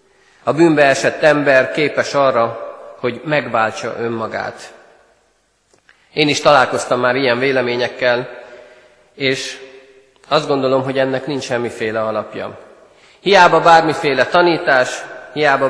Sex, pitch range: male, 120-150 Hz